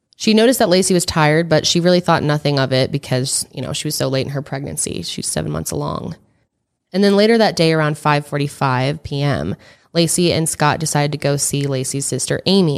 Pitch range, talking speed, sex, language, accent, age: 135-165 Hz, 210 wpm, female, English, American, 20-39